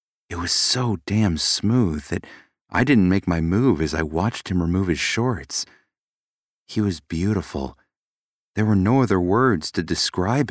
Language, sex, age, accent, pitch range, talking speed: English, male, 30-49, American, 80-100 Hz, 160 wpm